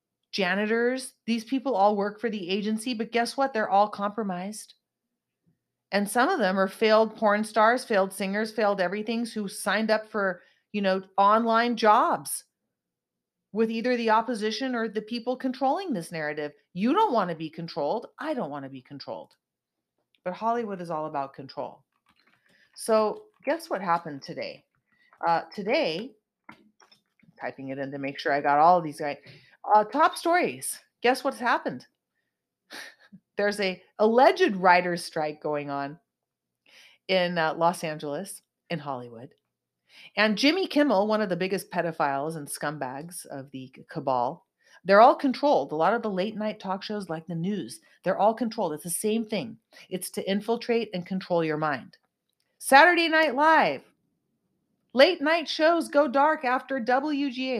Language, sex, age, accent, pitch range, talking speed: English, female, 40-59, American, 170-240 Hz, 160 wpm